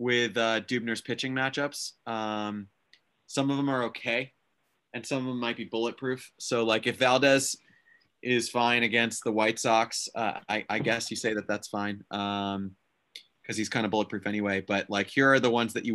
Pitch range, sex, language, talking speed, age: 105-135 Hz, male, English, 195 wpm, 30-49